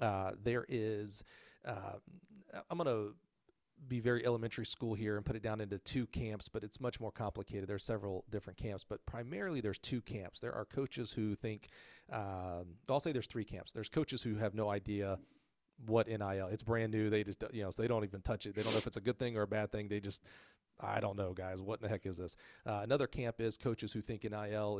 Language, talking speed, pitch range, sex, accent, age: English, 235 wpm, 100-120 Hz, male, American, 40-59